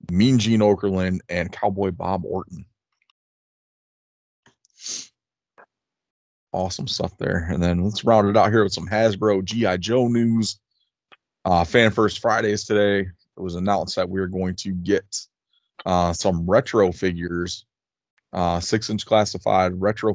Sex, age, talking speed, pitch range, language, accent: male, 20-39, 135 wpm, 90-105 Hz, English, American